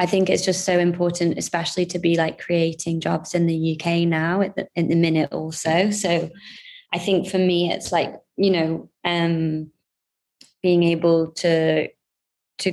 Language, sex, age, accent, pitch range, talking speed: English, female, 20-39, British, 165-180 Hz, 170 wpm